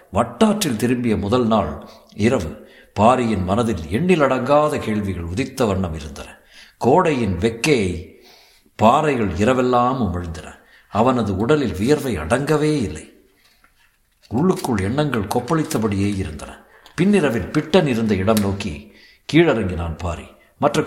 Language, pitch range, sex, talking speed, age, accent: Tamil, 100-140 Hz, male, 100 wpm, 60-79, native